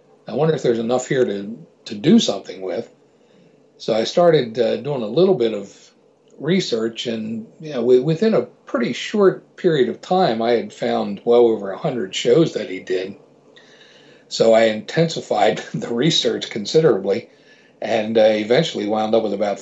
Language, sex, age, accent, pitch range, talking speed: English, male, 60-79, American, 115-160 Hz, 160 wpm